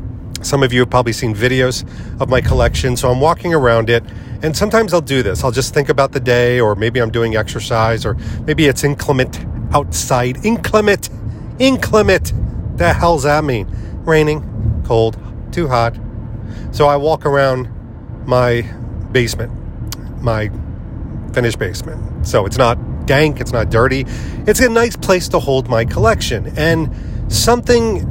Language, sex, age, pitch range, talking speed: English, male, 40-59, 110-135 Hz, 155 wpm